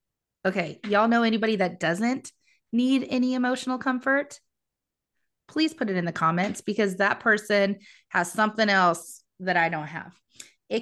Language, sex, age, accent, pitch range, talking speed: English, female, 20-39, American, 180-225 Hz, 150 wpm